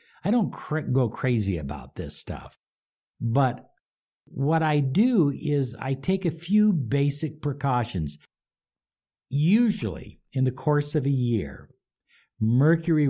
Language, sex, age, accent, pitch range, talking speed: English, male, 60-79, American, 110-155 Hz, 120 wpm